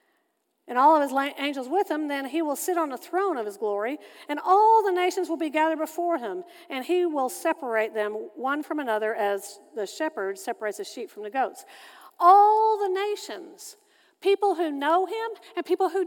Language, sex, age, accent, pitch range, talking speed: English, female, 50-69, American, 275-375 Hz, 200 wpm